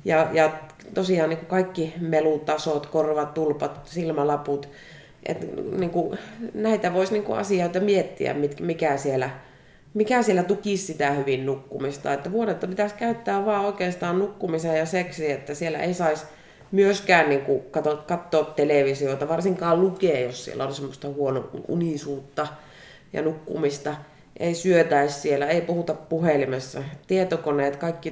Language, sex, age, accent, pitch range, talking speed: Finnish, female, 30-49, native, 140-185 Hz, 125 wpm